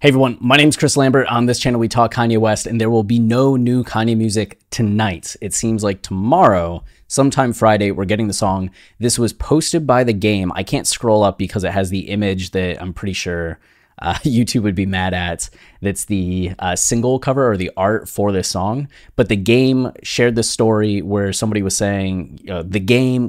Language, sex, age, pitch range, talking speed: English, male, 20-39, 95-115 Hz, 210 wpm